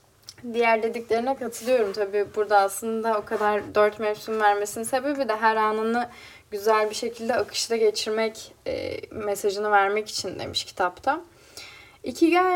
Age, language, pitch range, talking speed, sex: 10-29, Turkish, 200-285 Hz, 130 wpm, female